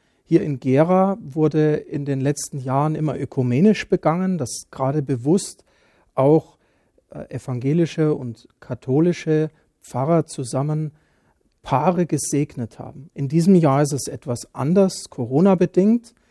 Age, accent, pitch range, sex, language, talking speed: 40-59, German, 135-170 Hz, male, German, 115 wpm